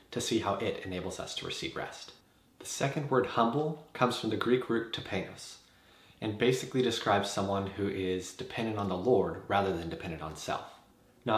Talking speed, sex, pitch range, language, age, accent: 185 wpm, male, 95-120 Hz, English, 30-49, American